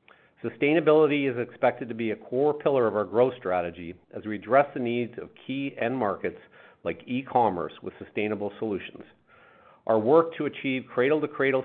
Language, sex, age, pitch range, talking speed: English, male, 50-69, 105-135 Hz, 160 wpm